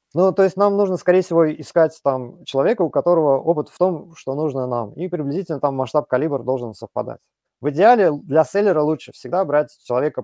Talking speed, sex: 190 wpm, male